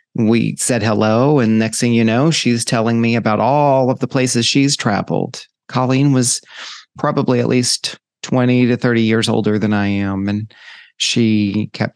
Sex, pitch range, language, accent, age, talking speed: male, 110-125 Hz, English, American, 40-59, 170 wpm